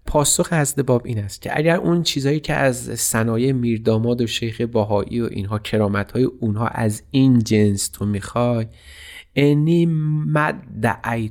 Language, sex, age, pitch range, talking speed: Persian, male, 30-49, 100-130 Hz, 145 wpm